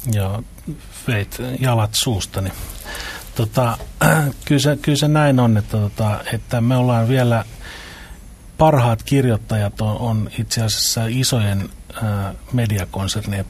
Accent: native